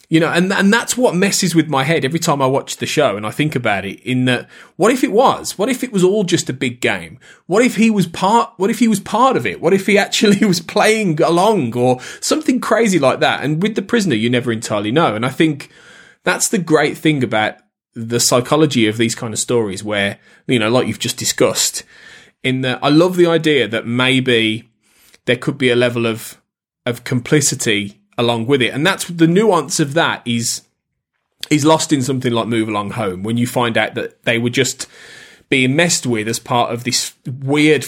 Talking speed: 220 wpm